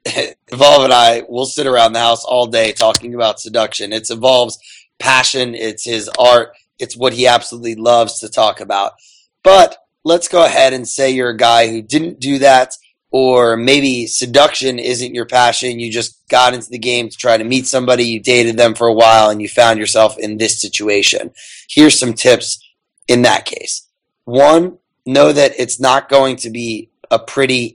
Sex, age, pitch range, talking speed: male, 20-39, 115-130 Hz, 185 wpm